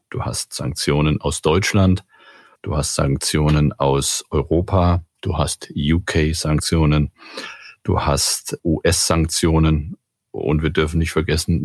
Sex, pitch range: male, 75-85 Hz